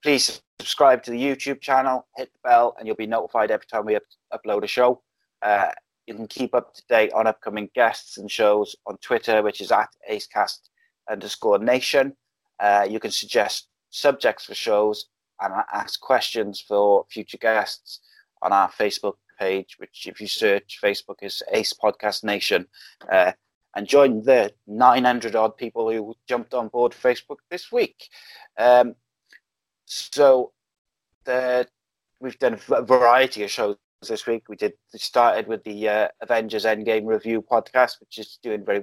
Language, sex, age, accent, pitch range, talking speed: English, male, 30-49, British, 110-125 Hz, 165 wpm